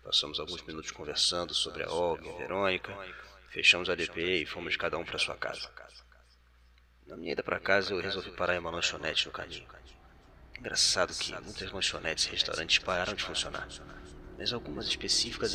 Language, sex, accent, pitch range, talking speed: Portuguese, male, Brazilian, 70-95 Hz, 175 wpm